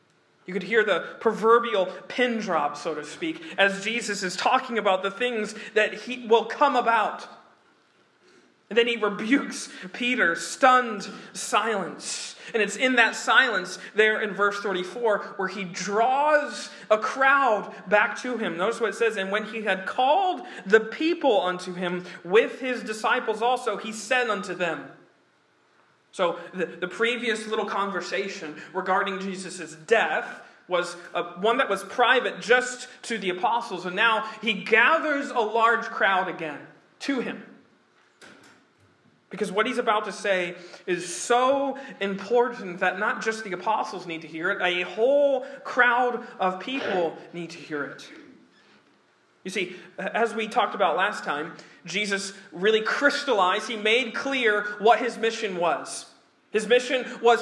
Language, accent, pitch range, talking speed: English, American, 190-245 Hz, 150 wpm